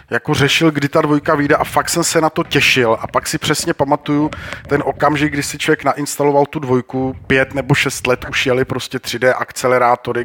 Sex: male